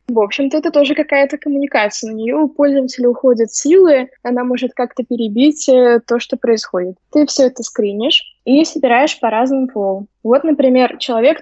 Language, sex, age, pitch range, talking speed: Russian, female, 20-39, 225-275 Hz, 165 wpm